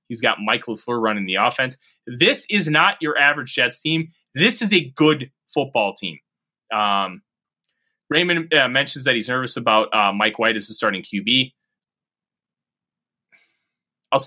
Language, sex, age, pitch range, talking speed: English, male, 20-39, 115-160 Hz, 150 wpm